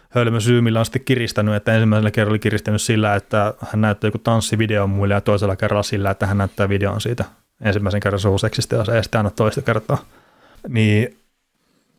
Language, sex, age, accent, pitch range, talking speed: Finnish, male, 30-49, native, 105-125 Hz, 185 wpm